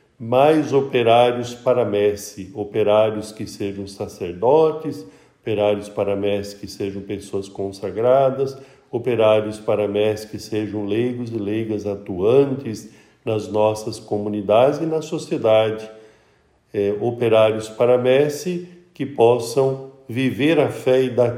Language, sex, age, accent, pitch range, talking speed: Portuguese, male, 50-69, Brazilian, 110-135 Hz, 115 wpm